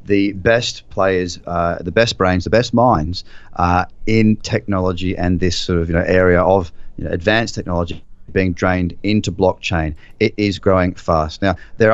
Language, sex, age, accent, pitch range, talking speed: English, male, 30-49, Australian, 90-115 Hz, 165 wpm